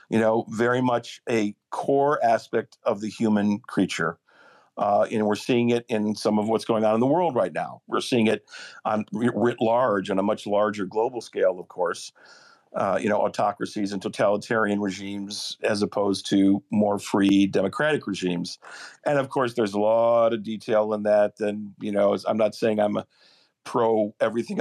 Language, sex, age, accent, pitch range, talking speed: English, male, 50-69, American, 100-120 Hz, 180 wpm